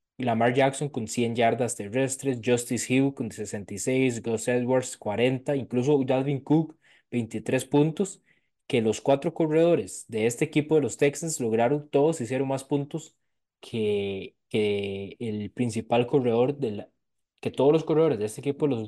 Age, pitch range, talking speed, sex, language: 20-39, 110-140 Hz, 155 wpm, male, Spanish